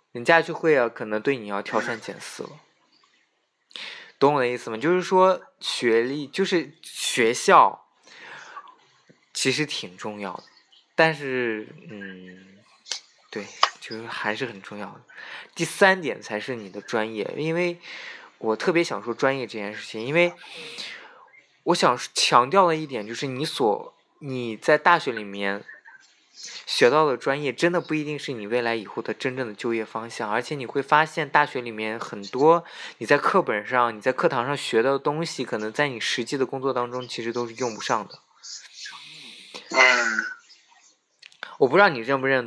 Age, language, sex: 20-39, Chinese, male